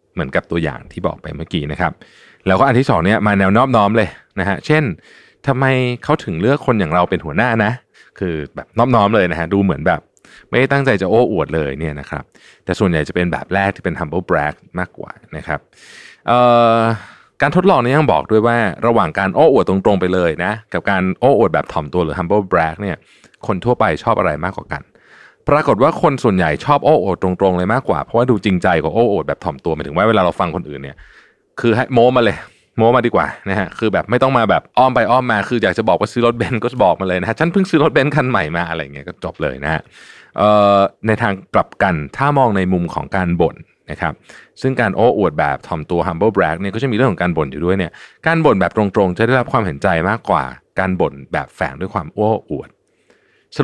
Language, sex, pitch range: Thai, male, 90-120 Hz